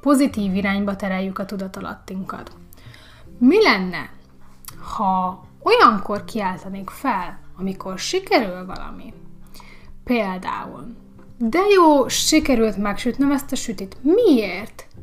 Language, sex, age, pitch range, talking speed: Hungarian, female, 30-49, 195-255 Hz, 95 wpm